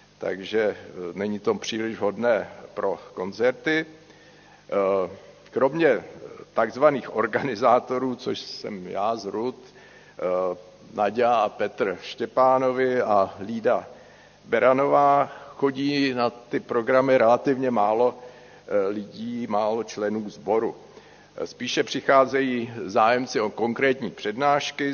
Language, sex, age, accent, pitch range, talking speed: Czech, male, 50-69, native, 115-140 Hz, 90 wpm